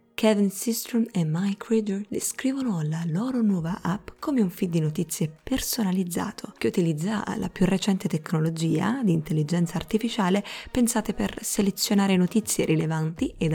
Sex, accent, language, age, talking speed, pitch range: female, native, Italian, 20-39, 135 wpm, 170-225 Hz